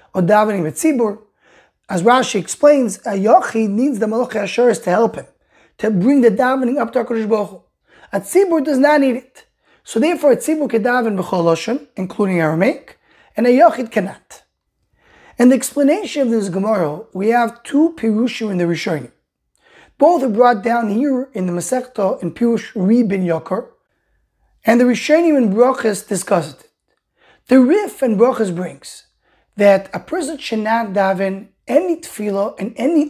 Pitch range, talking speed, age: 200-265 Hz, 160 wpm, 30-49